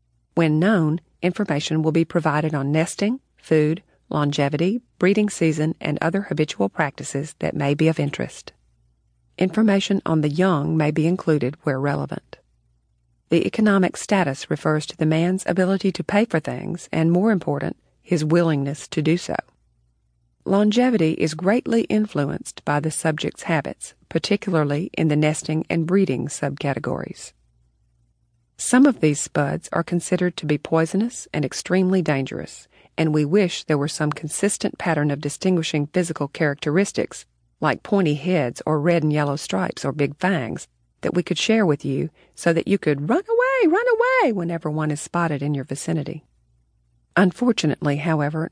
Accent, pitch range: American, 145-185 Hz